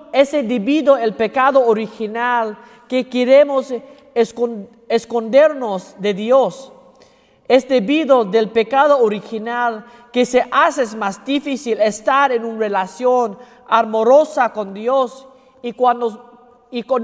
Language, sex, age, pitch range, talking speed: English, male, 40-59, 220-270 Hz, 110 wpm